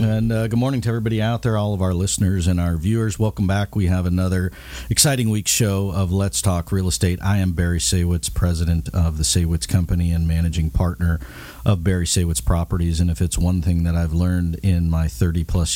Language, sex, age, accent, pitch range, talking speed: English, male, 50-69, American, 85-100 Hz, 210 wpm